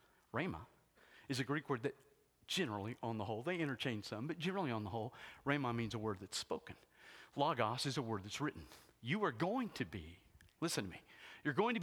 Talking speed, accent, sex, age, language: 210 wpm, American, male, 50-69, Polish